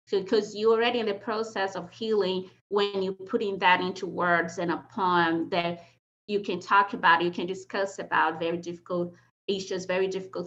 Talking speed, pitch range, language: 180 wpm, 180-215 Hz, English